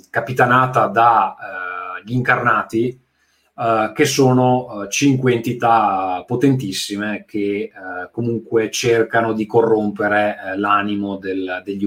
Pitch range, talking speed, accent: 100-125 Hz, 105 wpm, native